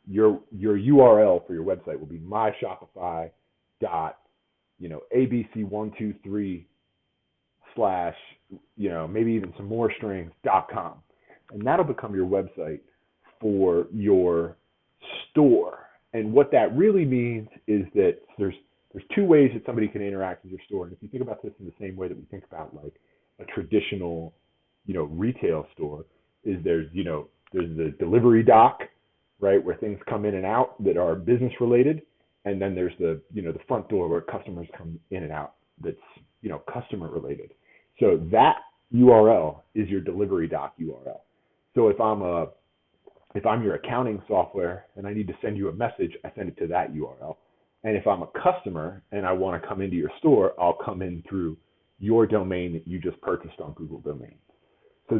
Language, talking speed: English, 185 wpm